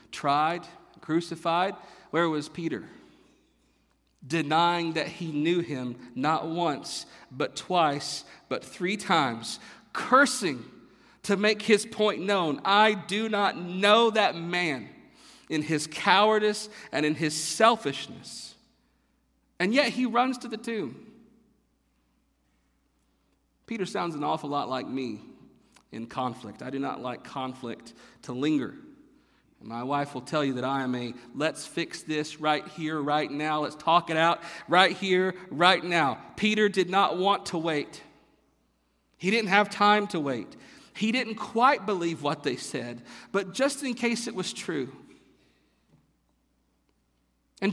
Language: English